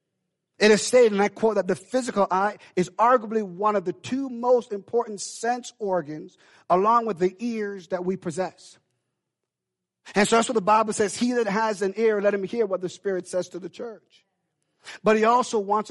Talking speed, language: 200 wpm, English